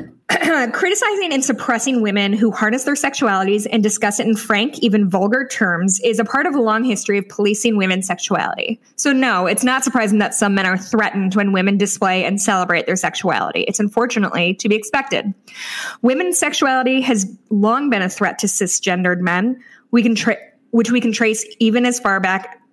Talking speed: 180 wpm